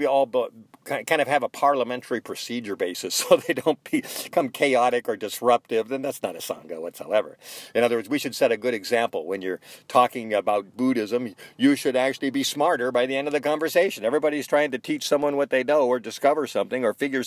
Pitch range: 125-165 Hz